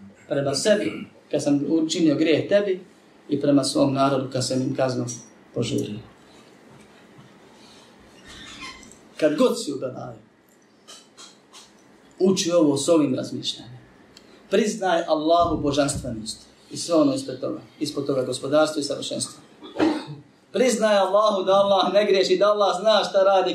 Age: 30-49